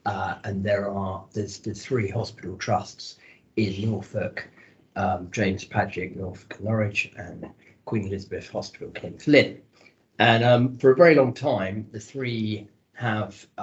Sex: male